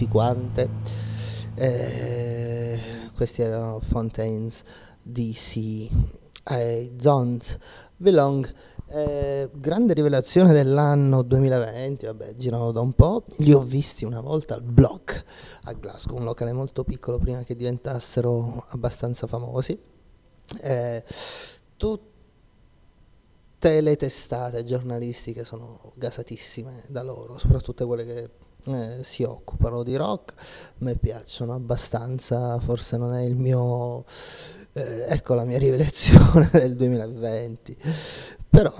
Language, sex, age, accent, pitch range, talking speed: Italian, male, 30-49, native, 115-140 Hz, 105 wpm